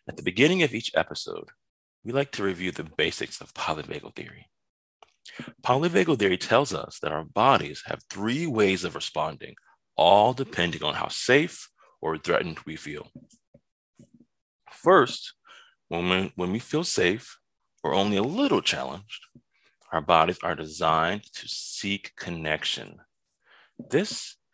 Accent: American